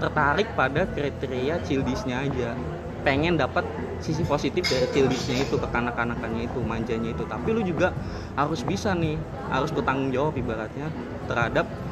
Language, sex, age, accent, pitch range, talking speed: Indonesian, male, 20-39, native, 115-145 Hz, 135 wpm